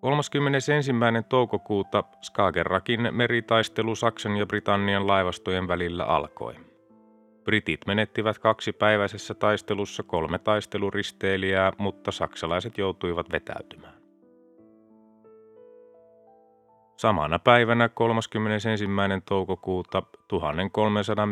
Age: 30-49